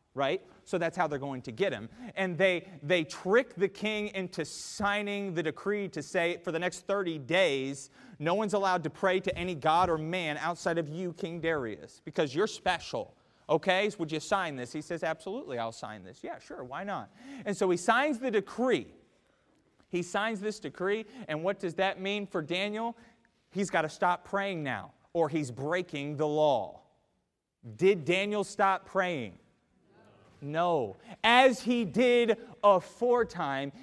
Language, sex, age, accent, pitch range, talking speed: English, male, 30-49, American, 165-215 Hz, 170 wpm